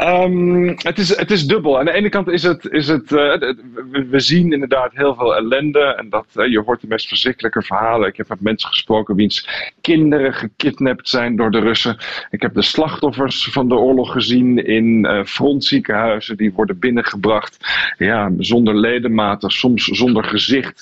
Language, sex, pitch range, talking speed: Dutch, male, 115-150 Hz, 170 wpm